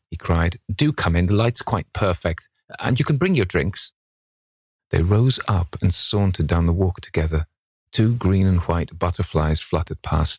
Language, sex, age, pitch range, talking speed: English, male, 40-59, 85-100 Hz, 180 wpm